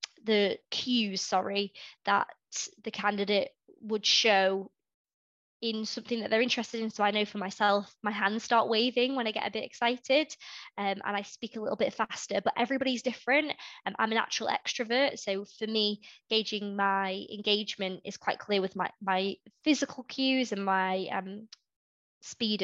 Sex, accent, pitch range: female, British, 200-225 Hz